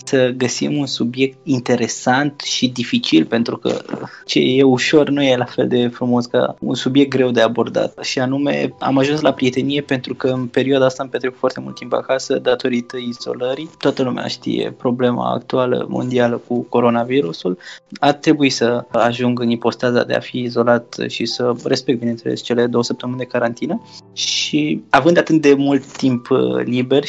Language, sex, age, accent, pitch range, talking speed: Romanian, male, 20-39, native, 120-140 Hz, 170 wpm